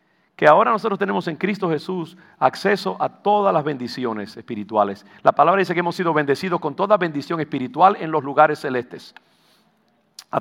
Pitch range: 125-175 Hz